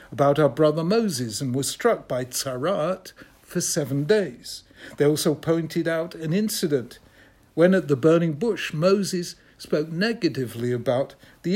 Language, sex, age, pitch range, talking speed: English, male, 60-79, 125-180 Hz, 145 wpm